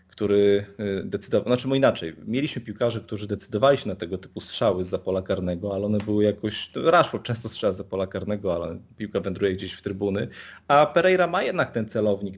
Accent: native